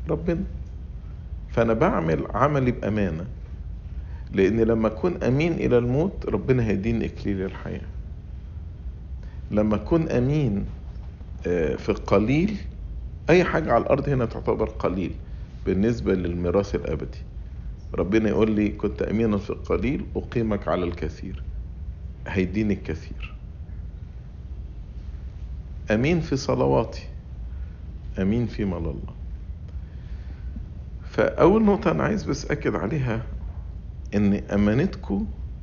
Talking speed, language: 100 wpm, English